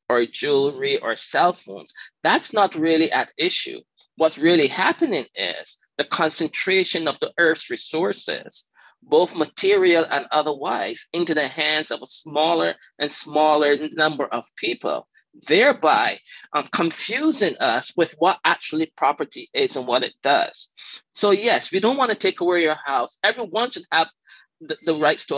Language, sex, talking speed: English, male, 155 wpm